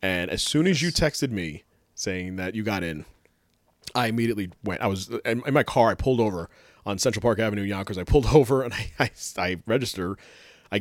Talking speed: 205 wpm